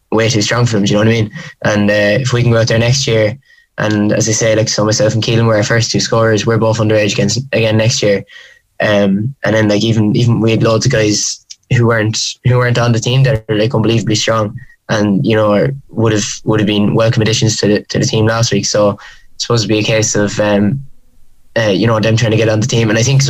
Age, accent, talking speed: 10-29, Irish, 270 wpm